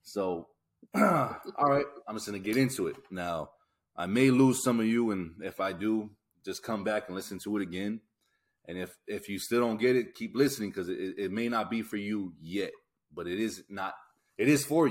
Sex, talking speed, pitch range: male, 220 wpm, 95-125 Hz